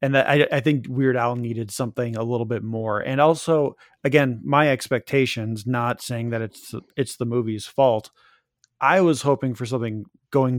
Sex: male